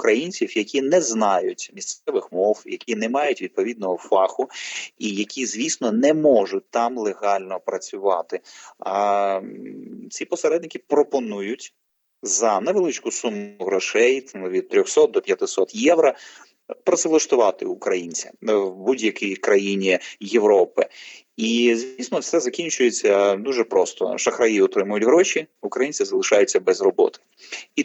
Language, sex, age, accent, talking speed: Ukrainian, male, 30-49, native, 110 wpm